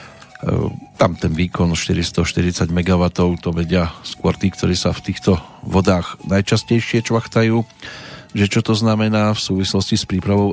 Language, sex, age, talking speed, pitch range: Slovak, male, 40-59, 135 wpm, 90-110 Hz